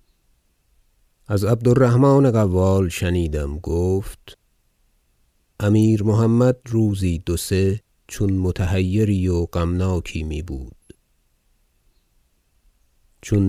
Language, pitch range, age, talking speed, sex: Persian, 85-110 Hz, 50-69, 70 wpm, male